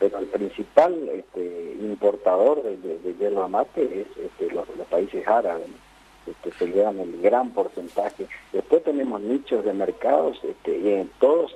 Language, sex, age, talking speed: Spanish, male, 40-59, 145 wpm